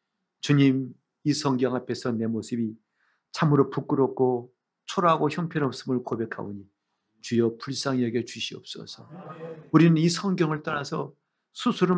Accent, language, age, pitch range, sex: native, Korean, 50-69, 135-195 Hz, male